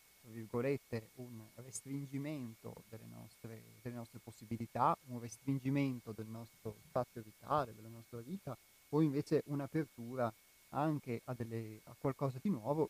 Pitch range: 115-140 Hz